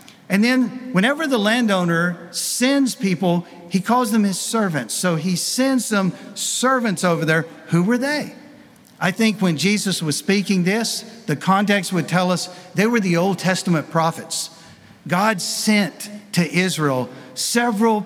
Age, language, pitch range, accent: 50-69, English, 160-210 Hz, American